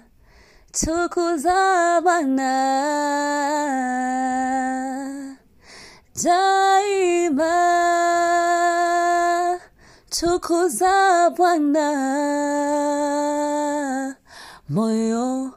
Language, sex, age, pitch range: English, female, 20-39, 235-310 Hz